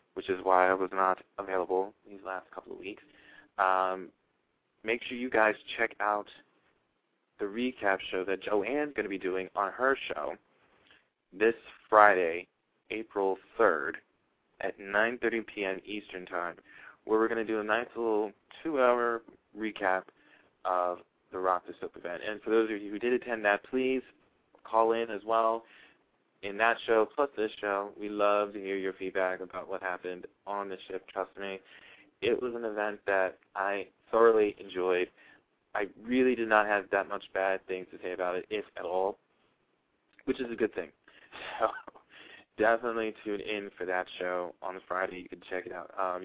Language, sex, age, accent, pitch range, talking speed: English, male, 20-39, American, 95-110 Hz, 175 wpm